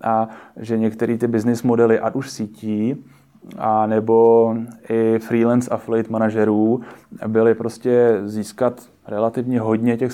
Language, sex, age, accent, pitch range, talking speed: Czech, male, 20-39, native, 105-120 Hz, 125 wpm